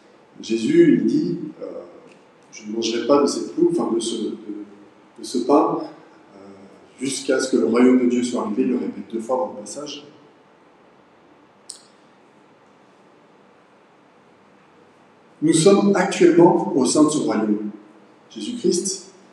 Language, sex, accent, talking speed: French, male, French, 140 wpm